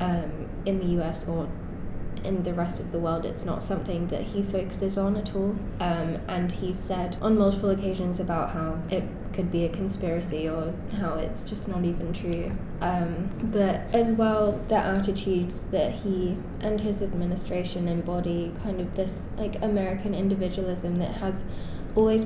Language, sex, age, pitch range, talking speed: English, female, 10-29, 175-200 Hz, 165 wpm